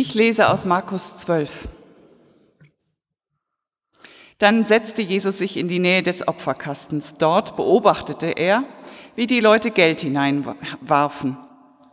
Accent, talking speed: German, 110 wpm